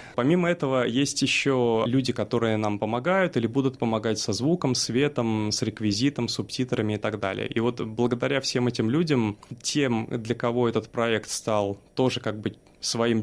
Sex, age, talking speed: male, 20-39, 165 wpm